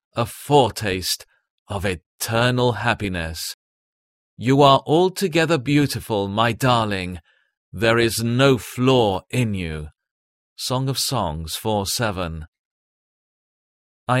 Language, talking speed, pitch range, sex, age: English, 90 wpm, 100-145 Hz, male, 40-59